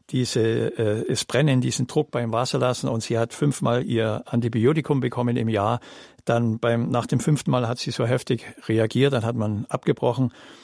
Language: German